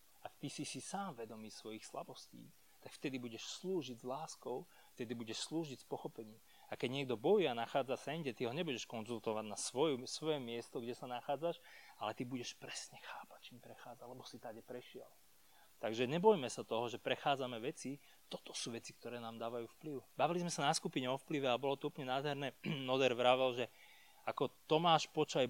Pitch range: 120-155 Hz